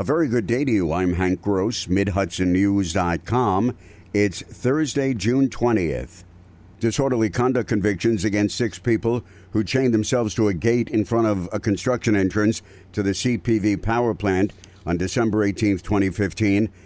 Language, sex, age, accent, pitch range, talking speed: English, male, 60-79, American, 95-110 Hz, 145 wpm